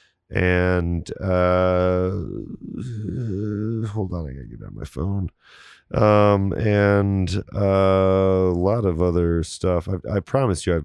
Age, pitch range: 30-49, 85-95 Hz